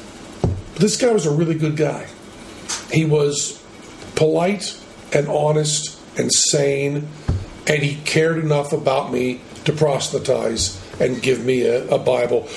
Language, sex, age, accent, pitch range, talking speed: English, male, 50-69, American, 125-155 Hz, 135 wpm